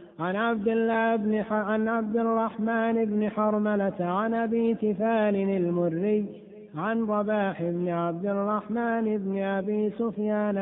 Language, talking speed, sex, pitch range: Arabic, 125 wpm, male, 195-225 Hz